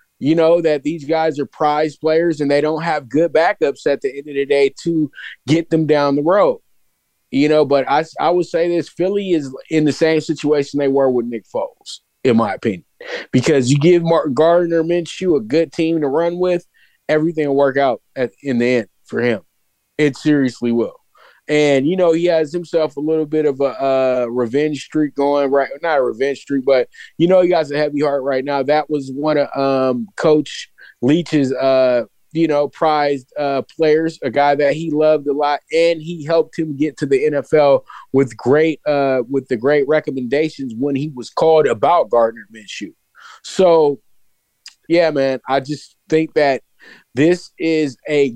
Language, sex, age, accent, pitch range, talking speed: English, male, 20-39, American, 135-160 Hz, 190 wpm